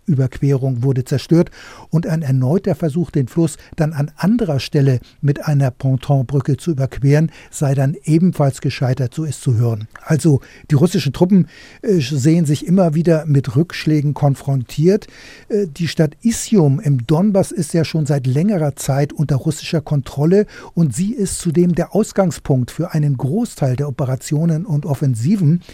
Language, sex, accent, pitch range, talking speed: German, male, German, 140-175 Hz, 150 wpm